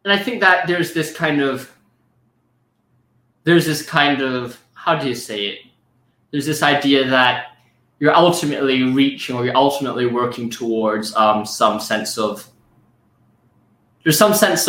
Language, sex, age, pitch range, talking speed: English, male, 20-39, 125-180 Hz, 145 wpm